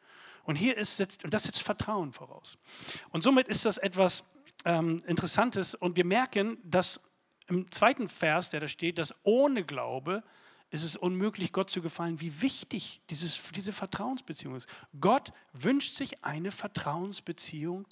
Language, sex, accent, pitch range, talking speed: German, male, German, 150-195 Hz, 155 wpm